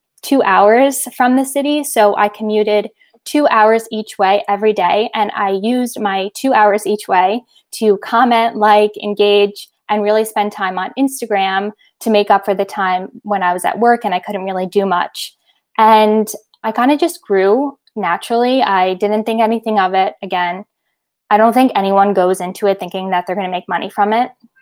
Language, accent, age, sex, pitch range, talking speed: English, American, 10-29, female, 195-230 Hz, 195 wpm